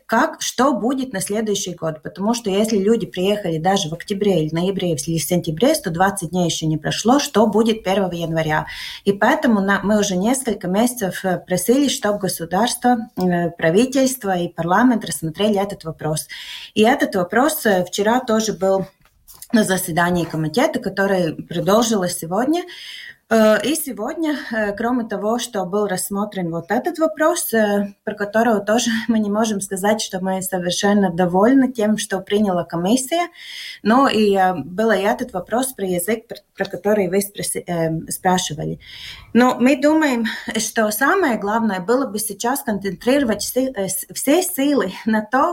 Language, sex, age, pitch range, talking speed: Russian, female, 30-49, 185-235 Hz, 140 wpm